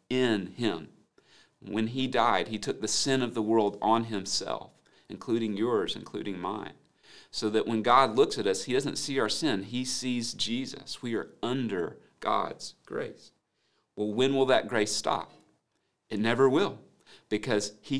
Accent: American